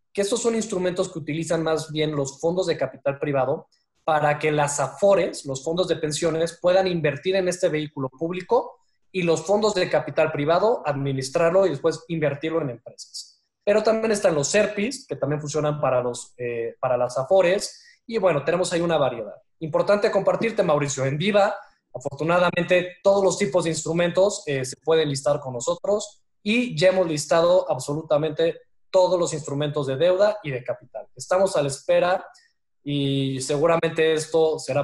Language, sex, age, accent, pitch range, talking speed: Spanish, male, 20-39, Mexican, 145-180 Hz, 170 wpm